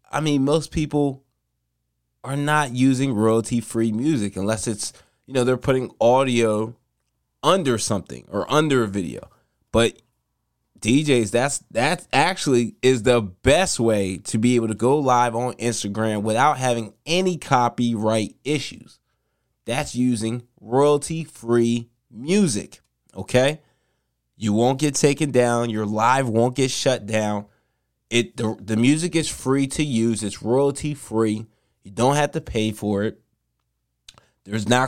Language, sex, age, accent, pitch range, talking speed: English, male, 20-39, American, 110-140 Hz, 140 wpm